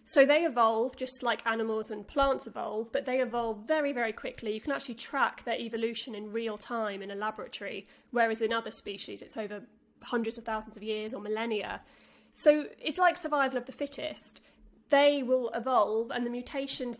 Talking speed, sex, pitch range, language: 185 wpm, female, 230-280 Hz, English